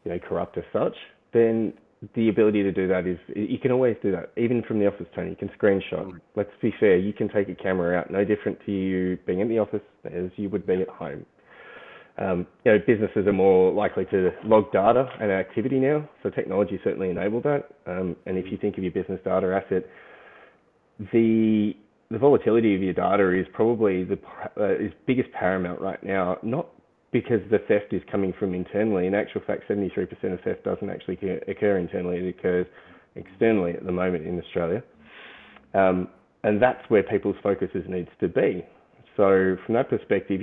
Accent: Australian